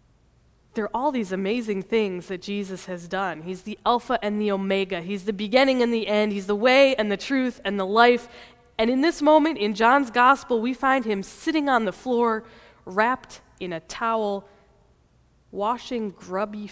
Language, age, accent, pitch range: English, 20-39, American, 180-230 Hz